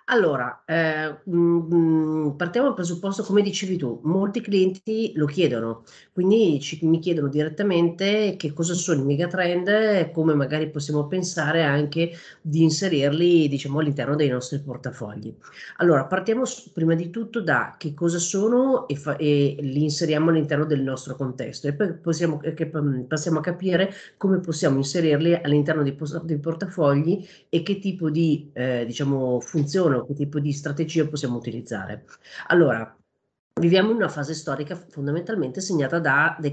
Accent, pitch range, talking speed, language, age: native, 145-180 Hz, 150 wpm, Italian, 40-59